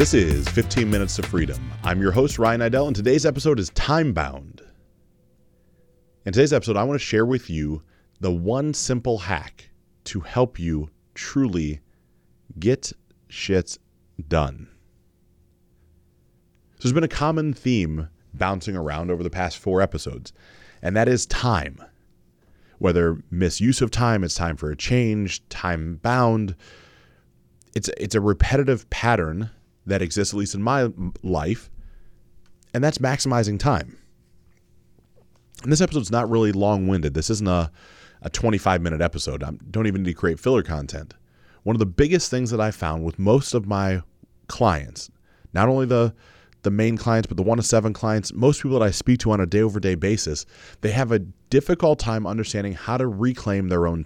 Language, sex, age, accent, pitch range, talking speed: English, male, 30-49, American, 85-115 Hz, 165 wpm